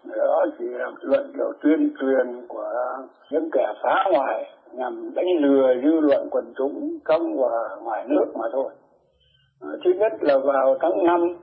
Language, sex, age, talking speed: Vietnamese, male, 60-79, 165 wpm